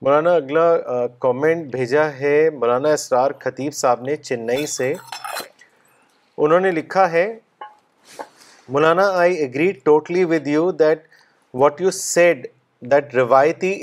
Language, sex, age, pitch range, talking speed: Urdu, male, 30-49, 145-180 Hz, 120 wpm